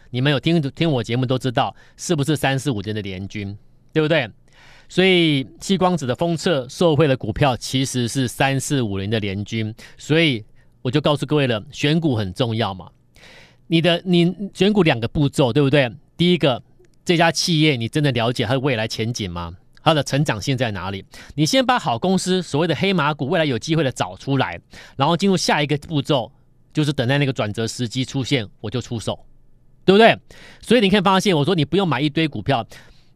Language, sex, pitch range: Chinese, male, 125-165 Hz